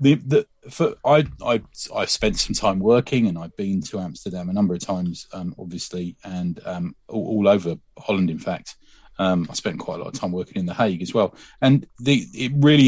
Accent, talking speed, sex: British, 220 wpm, male